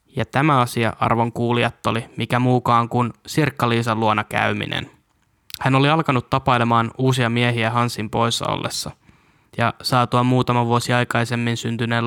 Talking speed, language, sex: 130 wpm, Finnish, male